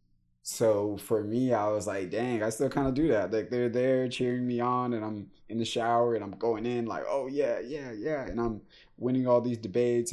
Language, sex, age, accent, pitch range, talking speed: English, male, 20-39, American, 90-115 Hz, 230 wpm